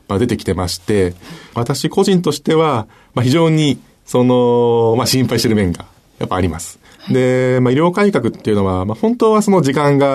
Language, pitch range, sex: Japanese, 95-135 Hz, male